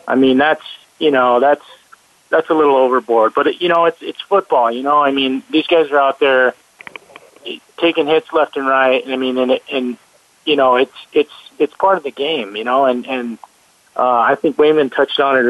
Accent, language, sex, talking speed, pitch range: American, English, male, 215 wpm, 125-160 Hz